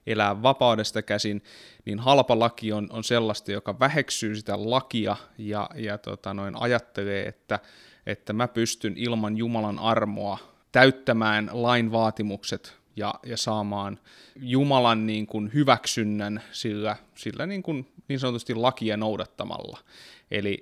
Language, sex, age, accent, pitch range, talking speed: Finnish, male, 20-39, native, 105-120 Hz, 125 wpm